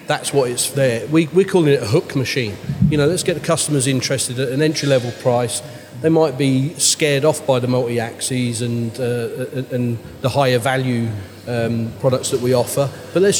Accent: British